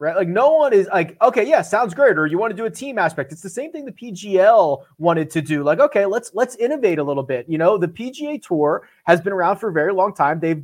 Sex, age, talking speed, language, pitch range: male, 30-49, 275 wpm, English, 155-210 Hz